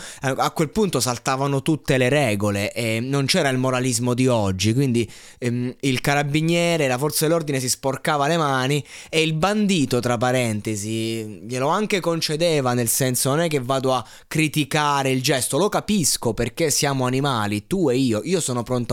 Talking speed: 170 wpm